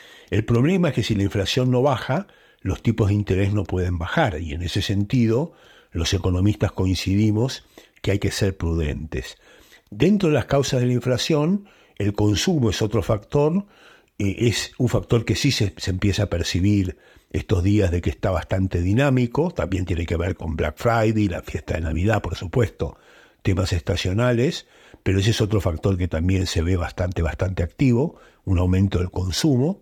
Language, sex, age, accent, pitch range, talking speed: Spanish, male, 60-79, Argentinian, 95-120 Hz, 175 wpm